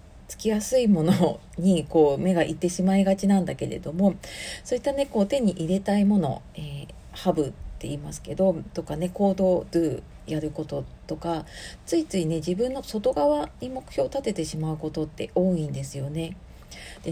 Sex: female